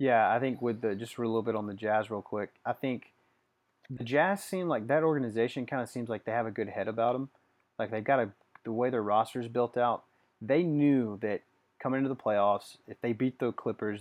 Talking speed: 240 wpm